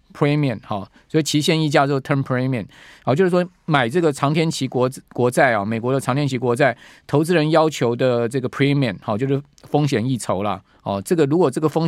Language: Chinese